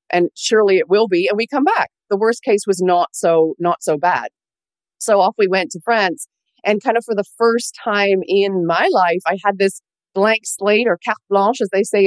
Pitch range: 180-215 Hz